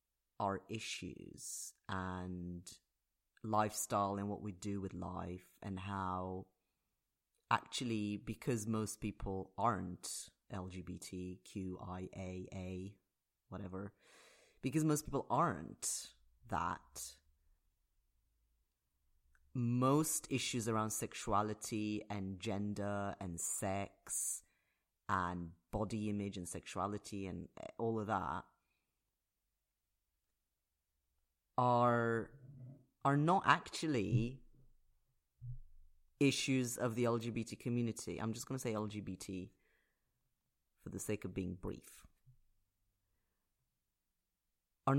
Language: English